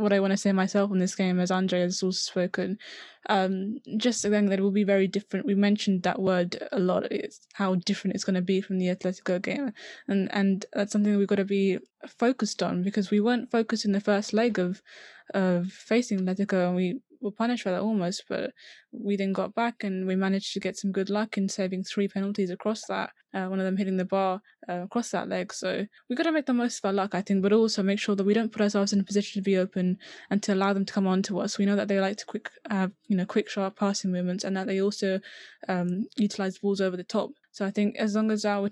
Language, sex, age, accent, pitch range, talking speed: English, female, 10-29, British, 185-205 Hz, 260 wpm